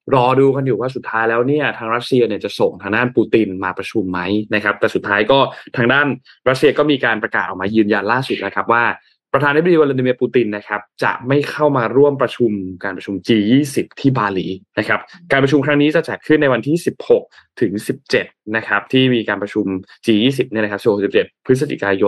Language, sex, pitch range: Thai, male, 105-135 Hz